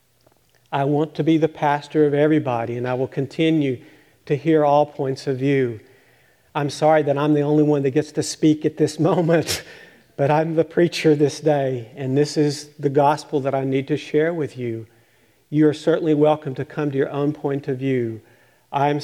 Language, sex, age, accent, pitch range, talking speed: English, male, 50-69, American, 135-155 Hz, 200 wpm